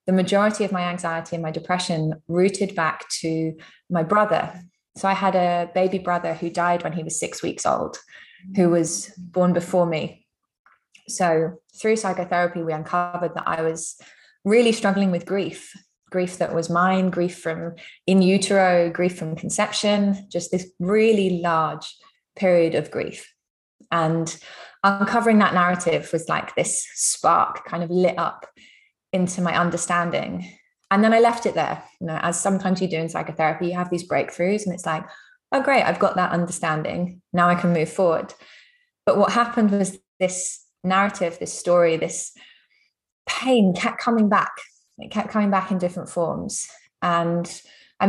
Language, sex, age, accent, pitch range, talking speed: English, female, 20-39, British, 170-195 Hz, 165 wpm